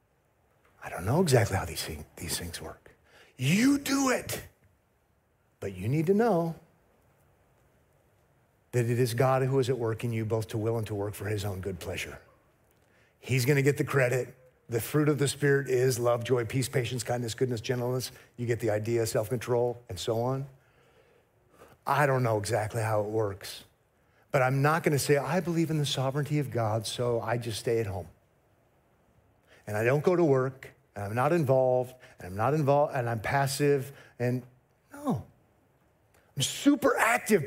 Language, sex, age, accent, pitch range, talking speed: English, male, 50-69, American, 115-145 Hz, 180 wpm